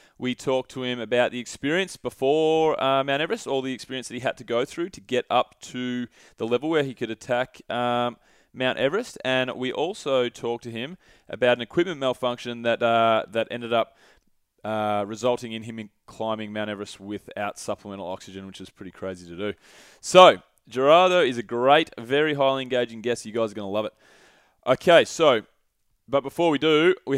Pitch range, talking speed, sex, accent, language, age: 115-140 Hz, 195 wpm, male, Australian, English, 20-39